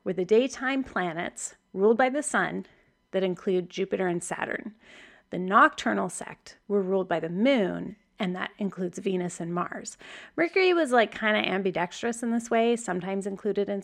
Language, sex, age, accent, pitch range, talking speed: English, female, 30-49, American, 185-230 Hz, 165 wpm